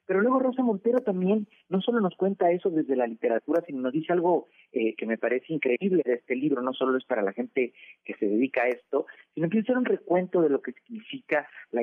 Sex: male